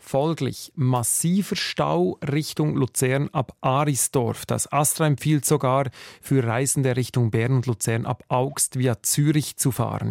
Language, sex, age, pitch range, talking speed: German, male, 40-59, 120-150 Hz, 135 wpm